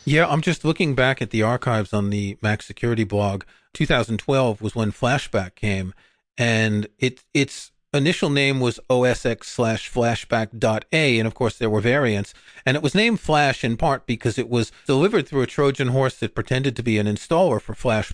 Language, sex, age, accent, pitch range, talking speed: English, male, 40-59, American, 115-140 Hz, 190 wpm